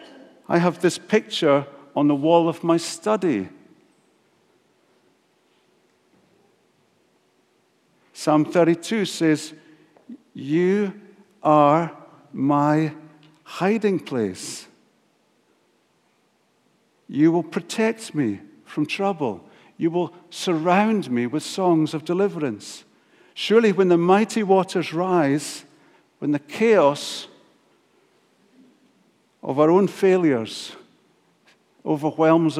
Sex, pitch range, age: male, 145-195 Hz, 50-69